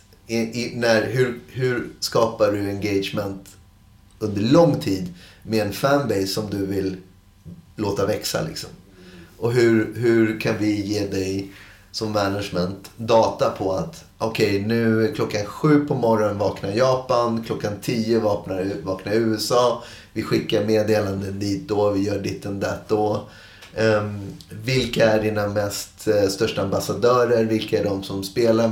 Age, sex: 30-49, male